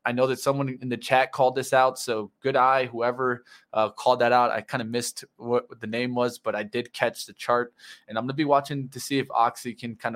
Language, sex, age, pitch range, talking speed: English, male, 20-39, 120-135 Hz, 260 wpm